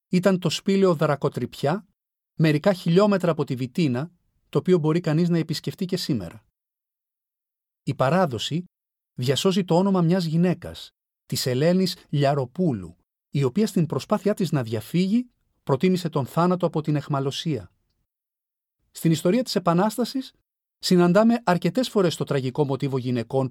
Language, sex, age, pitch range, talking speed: Greek, male, 40-59, 125-175 Hz, 130 wpm